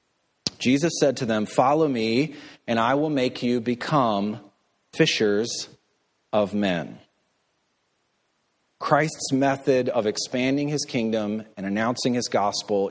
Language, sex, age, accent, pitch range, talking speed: English, male, 40-59, American, 105-145 Hz, 115 wpm